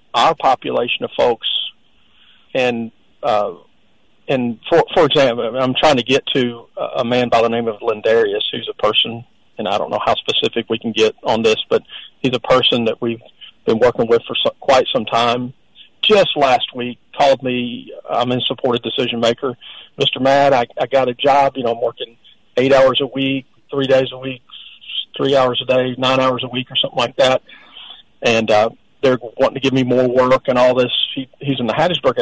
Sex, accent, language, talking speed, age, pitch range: male, American, English, 200 wpm, 40-59, 120-140 Hz